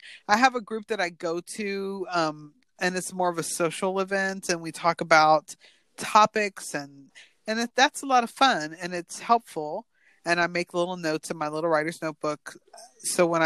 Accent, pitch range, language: American, 160-230 Hz, English